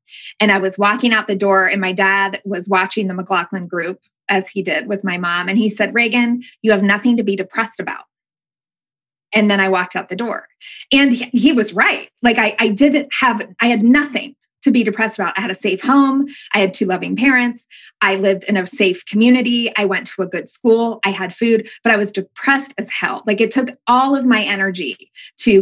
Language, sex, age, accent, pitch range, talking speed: English, female, 20-39, American, 195-245 Hz, 220 wpm